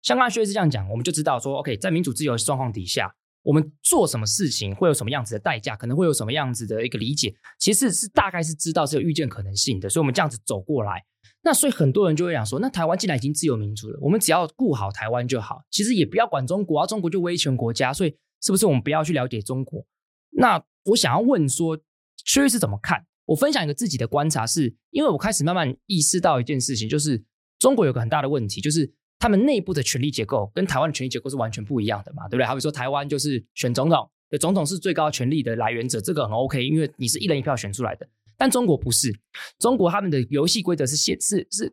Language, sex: Chinese, male